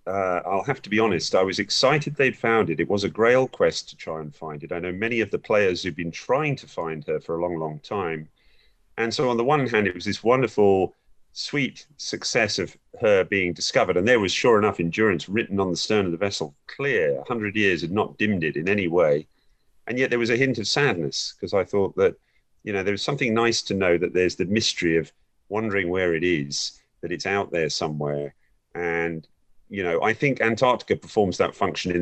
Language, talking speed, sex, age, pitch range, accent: English, 230 wpm, male, 40-59, 90-120 Hz, British